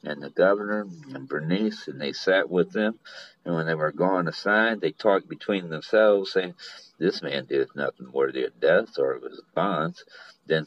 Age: 60-79